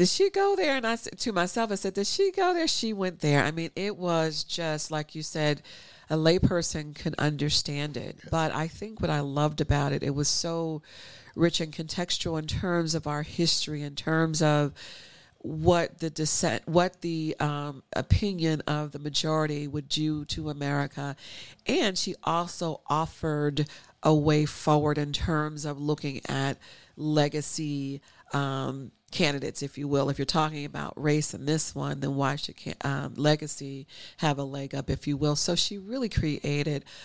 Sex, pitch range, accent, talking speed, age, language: female, 140-160 Hz, American, 175 wpm, 40-59, English